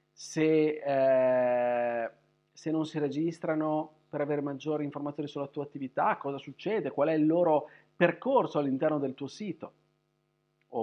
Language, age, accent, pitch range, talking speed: Italian, 40-59, native, 130-160 Hz, 140 wpm